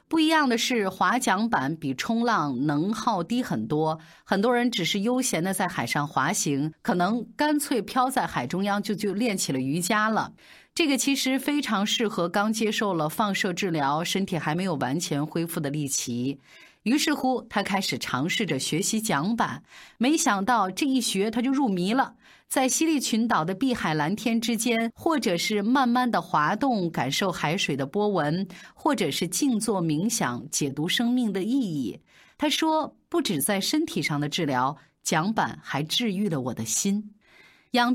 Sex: female